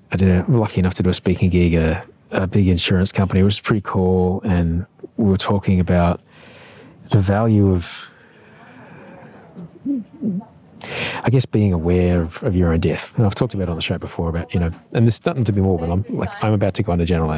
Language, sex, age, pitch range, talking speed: English, male, 40-59, 90-120 Hz, 210 wpm